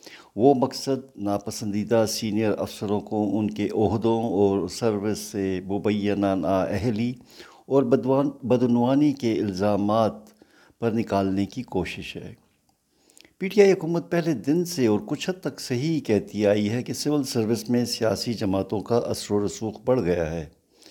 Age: 60-79